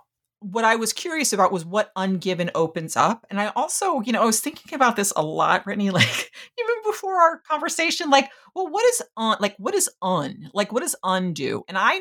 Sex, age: female, 40-59